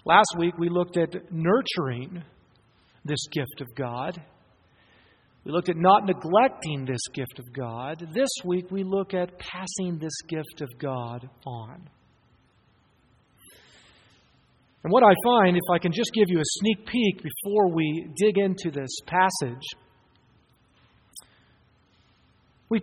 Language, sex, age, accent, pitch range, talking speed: English, male, 50-69, American, 150-220 Hz, 130 wpm